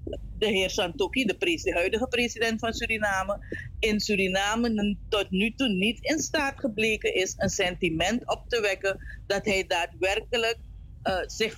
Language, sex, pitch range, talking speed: Dutch, female, 190-250 Hz, 150 wpm